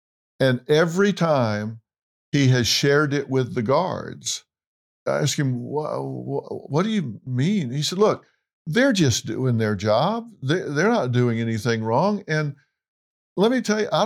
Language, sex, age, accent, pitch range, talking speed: English, male, 50-69, American, 130-170 Hz, 160 wpm